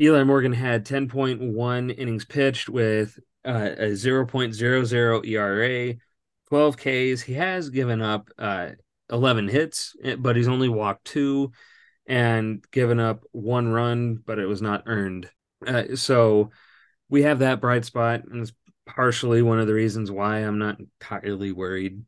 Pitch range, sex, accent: 105-125 Hz, male, American